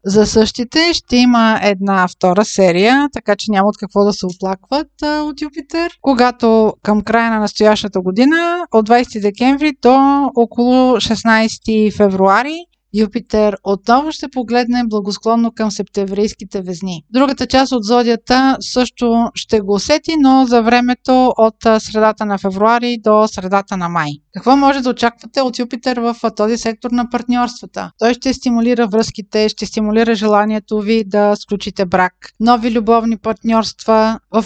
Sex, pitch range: female, 215-255 Hz